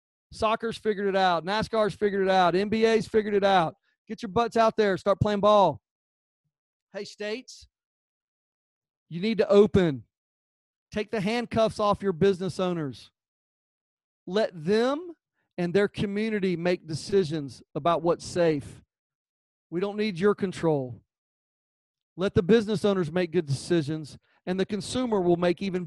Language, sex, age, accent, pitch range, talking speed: English, male, 40-59, American, 155-205 Hz, 140 wpm